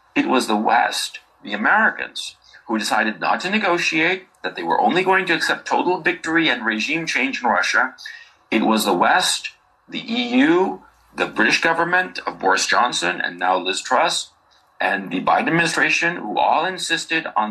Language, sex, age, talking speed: English, male, 40-59, 170 wpm